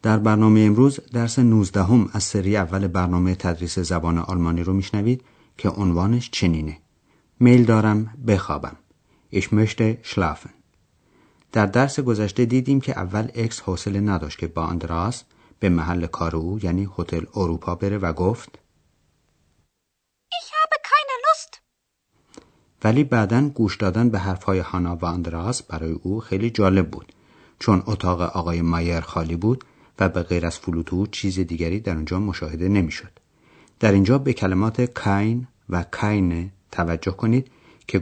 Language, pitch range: Persian, 85-115 Hz